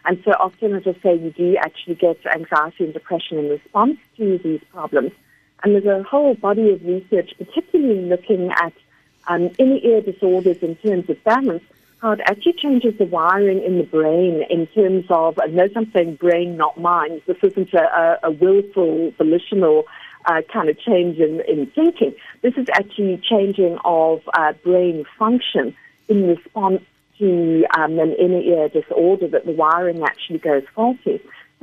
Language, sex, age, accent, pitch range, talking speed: English, female, 50-69, British, 165-205 Hz, 170 wpm